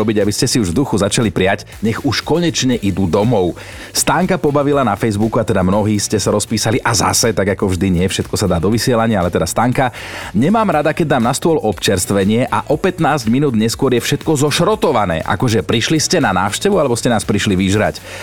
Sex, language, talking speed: male, Slovak, 200 wpm